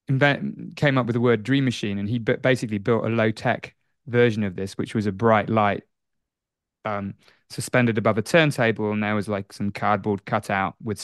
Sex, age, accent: male, 20-39, British